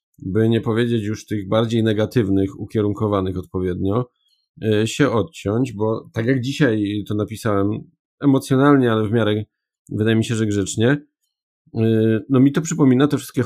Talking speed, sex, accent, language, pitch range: 145 wpm, male, native, Polish, 100-120 Hz